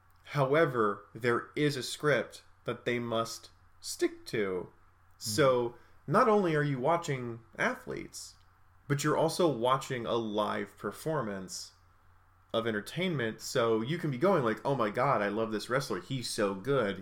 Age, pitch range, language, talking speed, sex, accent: 30-49, 100-135 Hz, English, 150 wpm, male, American